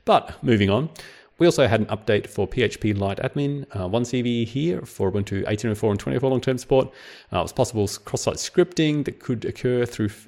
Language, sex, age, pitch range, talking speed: English, male, 30-49, 105-135 Hz, 185 wpm